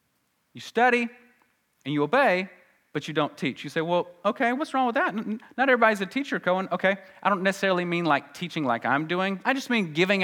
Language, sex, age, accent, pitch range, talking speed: English, male, 30-49, American, 145-220 Hz, 215 wpm